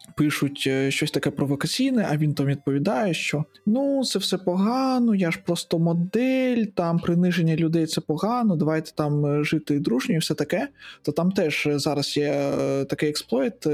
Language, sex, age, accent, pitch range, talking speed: Ukrainian, male, 20-39, native, 140-170 Hz, 160 wpm